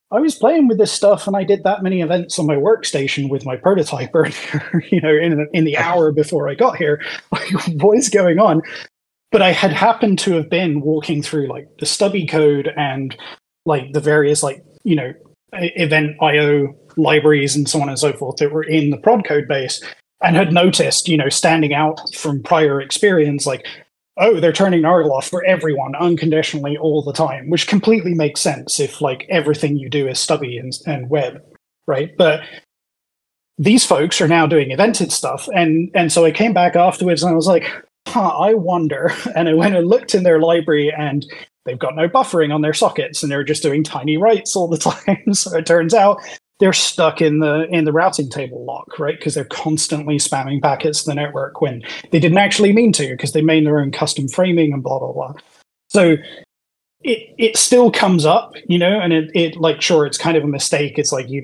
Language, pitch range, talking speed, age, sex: English, 145-180 Hz, 205 wpm, 20-39, male